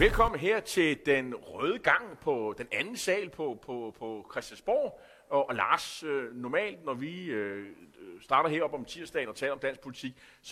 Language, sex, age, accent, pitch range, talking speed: Danish, male, 30-49, native, 115-175 Hz, 175 wpm